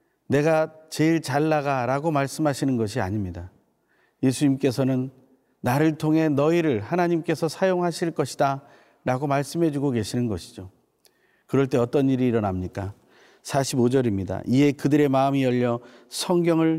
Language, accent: Korean, native